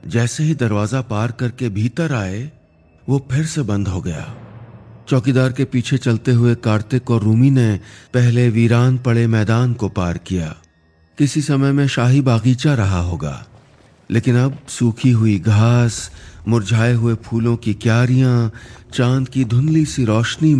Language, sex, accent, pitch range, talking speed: Hindi, male, native, 105-135 Hz, 150 wpm